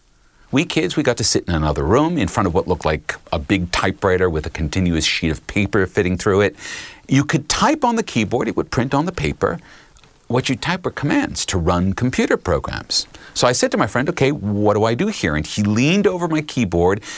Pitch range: 90-145 Hz